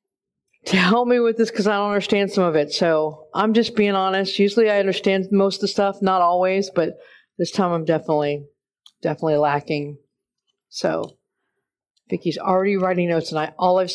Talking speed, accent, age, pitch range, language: 180 wpm, American, 50-69, 170-200 Hz, English